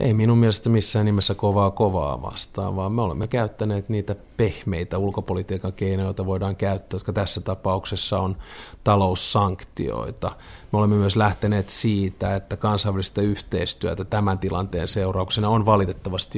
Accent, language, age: native, Finnish, 30-49